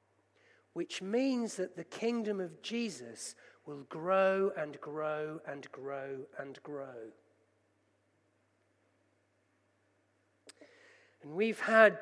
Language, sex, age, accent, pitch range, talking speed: English, male, 40-59, British, 150-210 Hz, 90 wpm